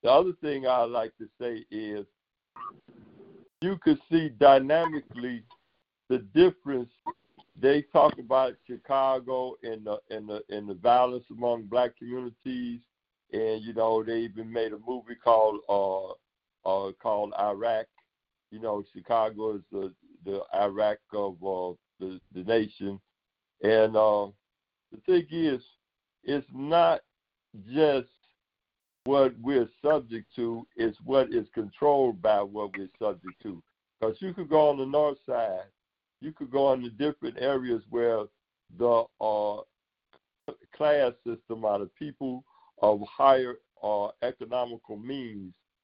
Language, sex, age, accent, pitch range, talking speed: English, male, 60-79, American, 105-135 Hz, 135 wpm